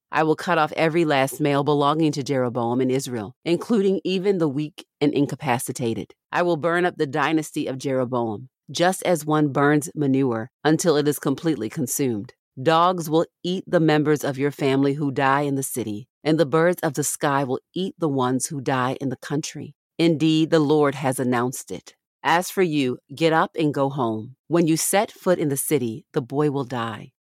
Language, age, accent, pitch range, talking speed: English, 40-59, American, 130-160 Hz, 195 wpm